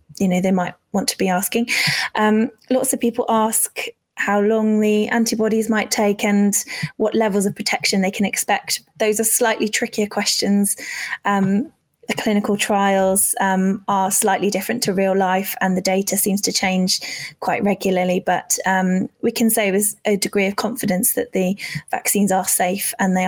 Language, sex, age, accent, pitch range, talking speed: English, female, 20-39, British, 190-210 Hz, 175 wpm